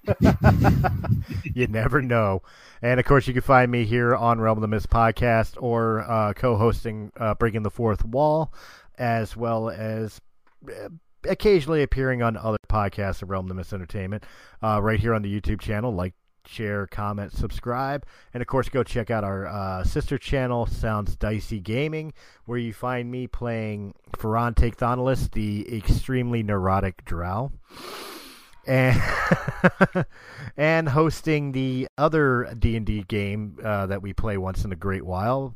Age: 40-59